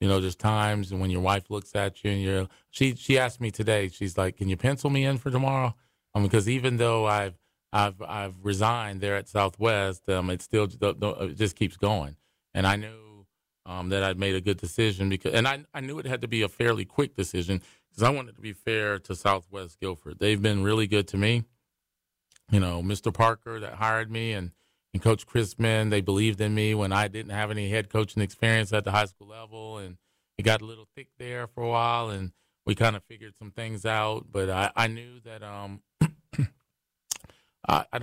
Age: 30-49